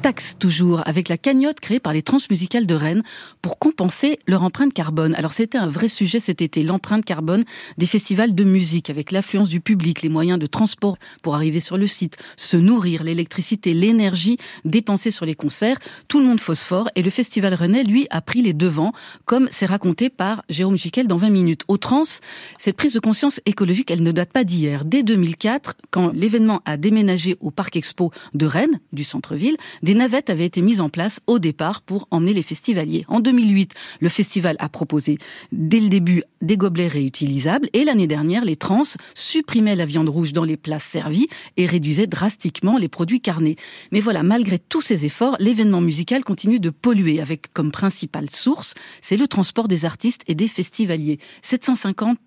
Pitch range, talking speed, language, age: 165-225 Hz, 190 wpm, French, 40-59